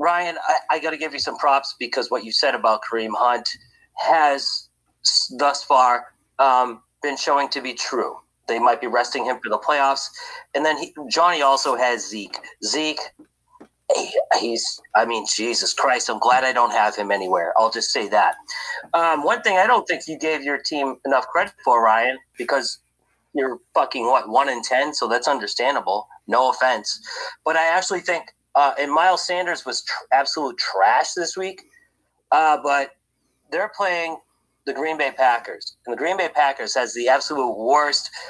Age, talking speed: 30-49, 175 wpm